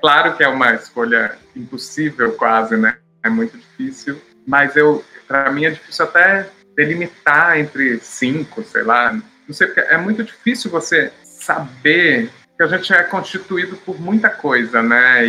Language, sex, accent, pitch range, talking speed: Portuguese, male, Brazilian, 120-165 Hz, 155 wpm